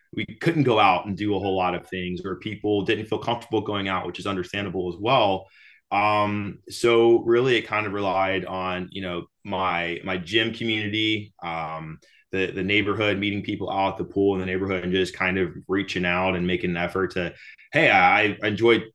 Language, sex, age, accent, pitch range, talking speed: English, male, 20-39, American, 90-110 Hz, 205 wpm